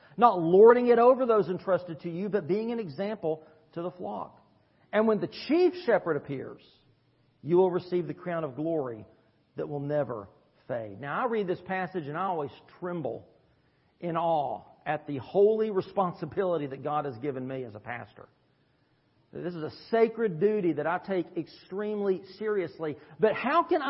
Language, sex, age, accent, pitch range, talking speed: English, male, 40-59, American, 180-260 Hz, 170 wpm